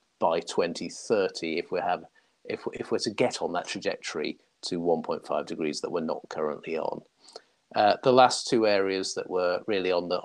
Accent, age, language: British, 40-59, English